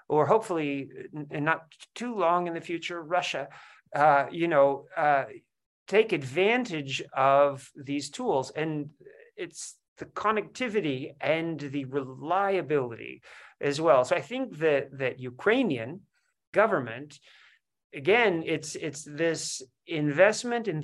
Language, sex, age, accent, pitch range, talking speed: English, male, 40-59, American, 140-185 Hz, 115 wpm